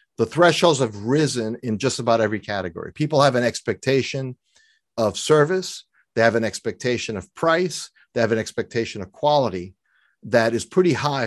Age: 40-59